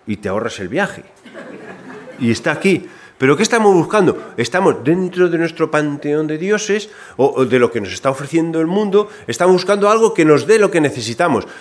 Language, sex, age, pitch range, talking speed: Spanish, male, 40-59, 125-190 Hz, 190 wpm